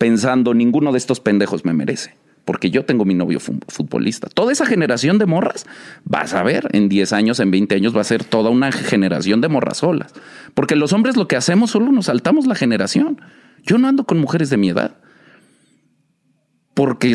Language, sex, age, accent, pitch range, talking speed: Spanish, male, 40-59, Mexican, 105-155 Hz, 195 wpm